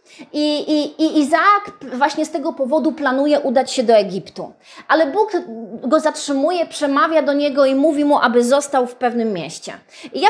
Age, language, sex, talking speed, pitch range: 30-49, Polish, female, 165 wpm, 245-315 Hz